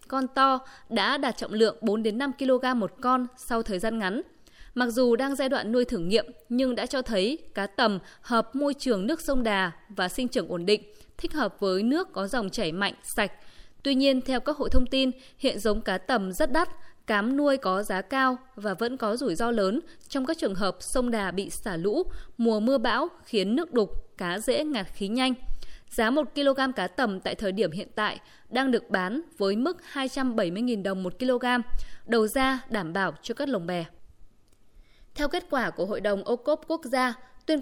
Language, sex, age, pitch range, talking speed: Vietnamese, female, 20-39, 205-270 Hz, 205 wpm